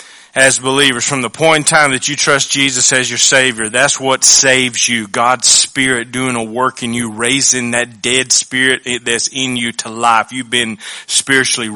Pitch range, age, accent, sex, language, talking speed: 115-130 Hz, 30-49, American, male, English, 190 wpm